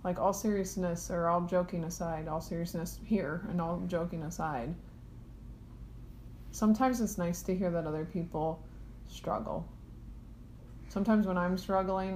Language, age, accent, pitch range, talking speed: English, 30-49, American, 155-180 Hz, 135 wpm